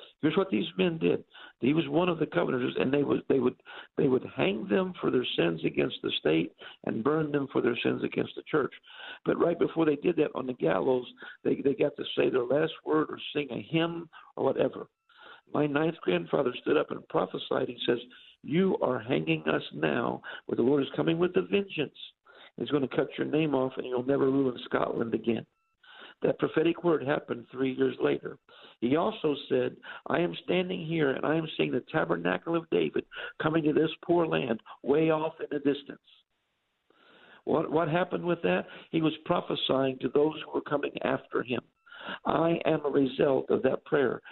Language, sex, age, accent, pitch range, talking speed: English, male, 60-79, American, 140-200 Hz, 200 wpm